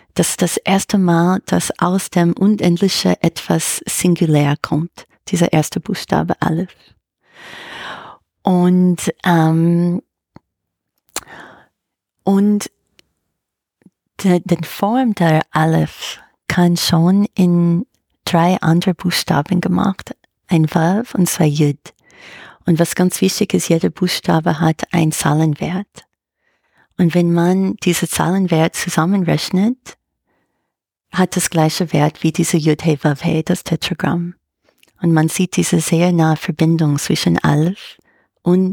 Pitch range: 160-185 Hz